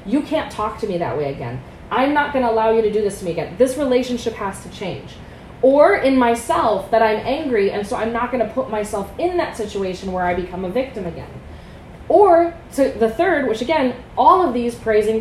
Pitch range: 210-275 Hz